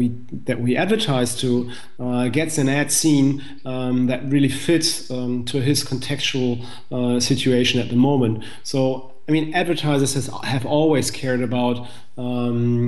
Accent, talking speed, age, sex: German, 145 wpm, 40-59, male